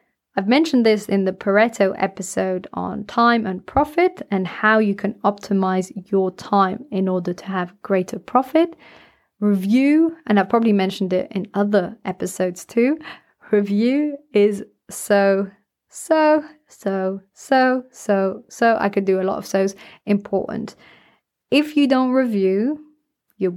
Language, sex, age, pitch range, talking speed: English, female, 30-49, 195-235 Hz, 140 wpm